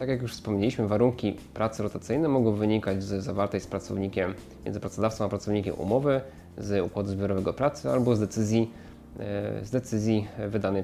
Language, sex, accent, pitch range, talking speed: Polish, male, native, 100-120 Hz, 155 wpm